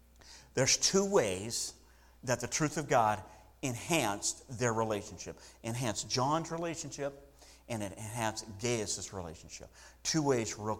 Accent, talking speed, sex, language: American, 120 wpm, male, English